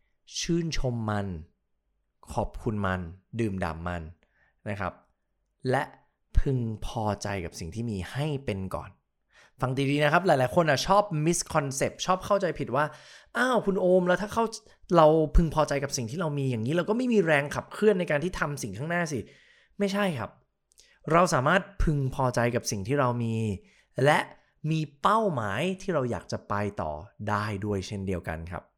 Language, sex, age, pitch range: English, male, 20-39, 110-165 Hz